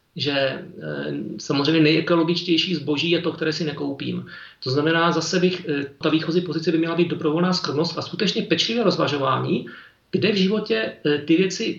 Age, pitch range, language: 40-59, 150-180 Hz, Czech